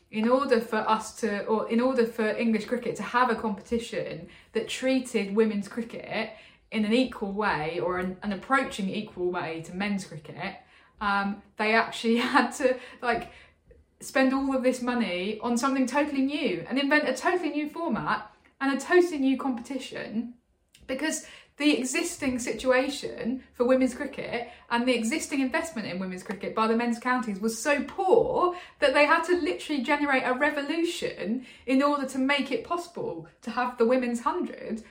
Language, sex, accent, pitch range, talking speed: English, female, British, 225-290 Hz, 170 wpm